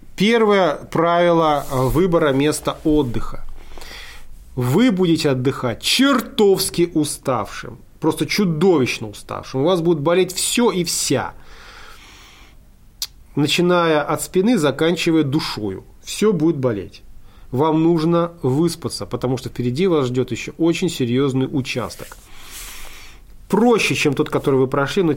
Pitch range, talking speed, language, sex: 130-175 Hz, 110 wpm, Russian, male